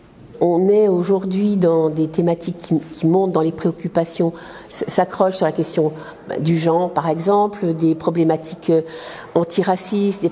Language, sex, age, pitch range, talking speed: French, female, 50-69, 165-205 Hz, 140 wpm